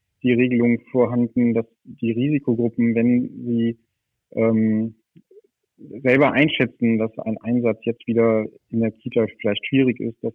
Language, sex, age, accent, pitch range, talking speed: German, male, 40-59, German, 115-125 Hz, 135 wpm